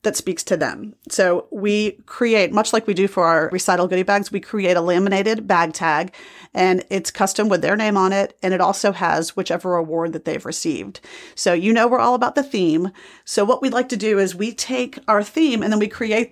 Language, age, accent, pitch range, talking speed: English, 40-59, American, 175-215 Hz, 230 wpm